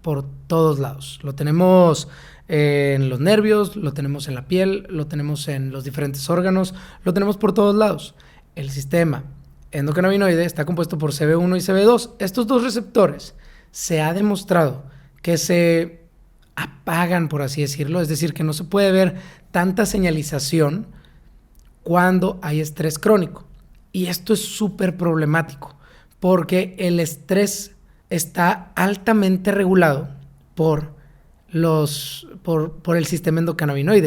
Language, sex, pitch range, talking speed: English, male, 150-185 Hz, 135 wpm